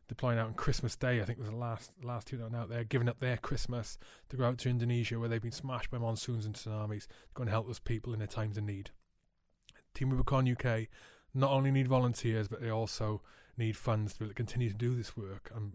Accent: British